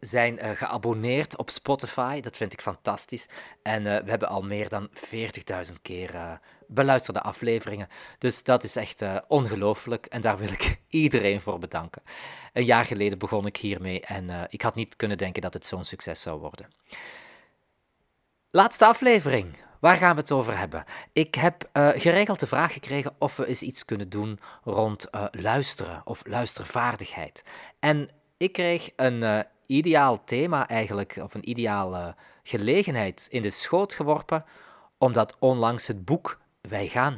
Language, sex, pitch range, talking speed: Dutch, male, 105-135 Hz, 165 wpm